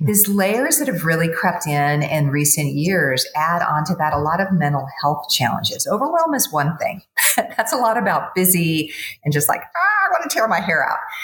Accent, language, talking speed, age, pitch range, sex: American, English, 215 wpm, 50-69, 145-190 Hz, female